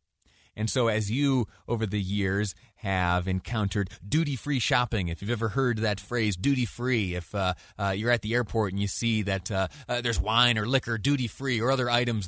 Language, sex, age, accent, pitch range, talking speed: English, male, 30-49, American, 90-115 Hz, 190 wpm